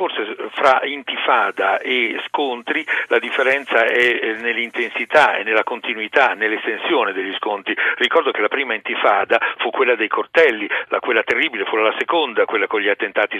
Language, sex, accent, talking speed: Italian, male, native, 155 wpm